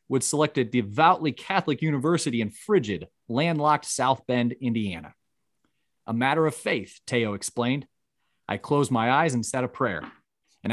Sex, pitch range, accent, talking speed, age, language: male, 115-145 Hz, American, 150 wpm, 30-49, English